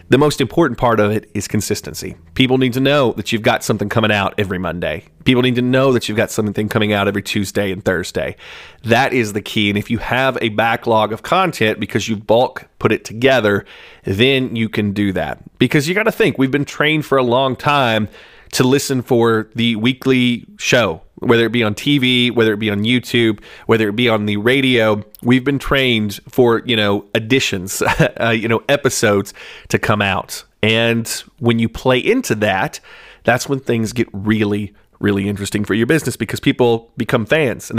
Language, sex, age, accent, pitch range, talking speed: English, male, 30-49, American, 105-130 Hz, 200 wpm